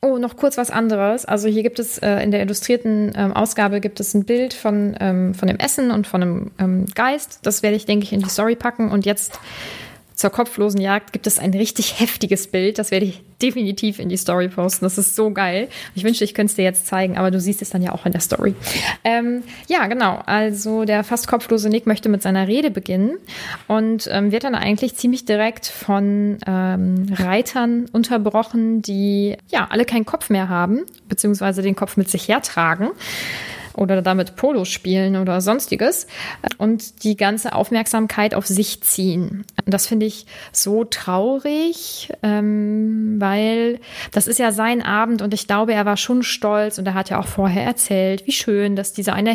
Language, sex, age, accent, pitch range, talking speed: German, female, 20-39, German, 195-225 Hz, 195 wpm